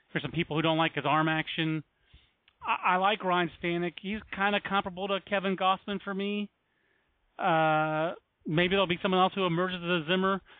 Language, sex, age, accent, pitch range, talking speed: English, male, 40-59, American, 140-180 Hz, 195 wpm